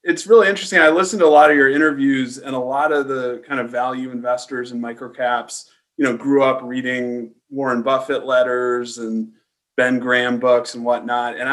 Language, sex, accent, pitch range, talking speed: English, male, American, 120-135 Hz, 195 wpm